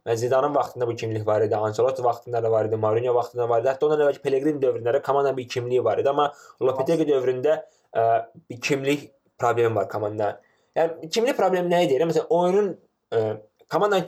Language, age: English, 20-39